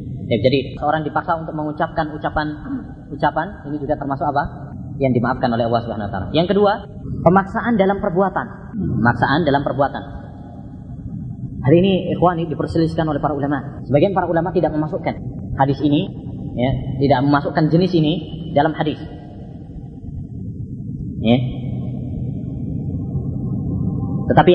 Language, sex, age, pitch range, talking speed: Malay, female, 20-39, 130-160 Hz, 115 wpm